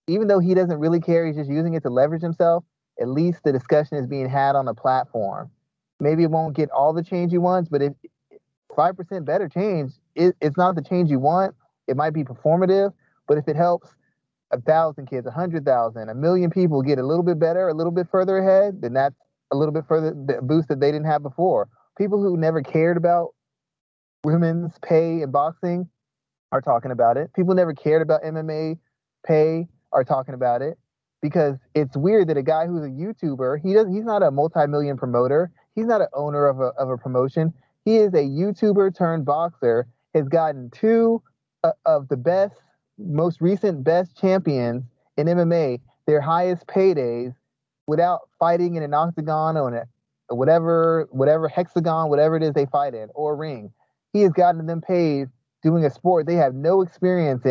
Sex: male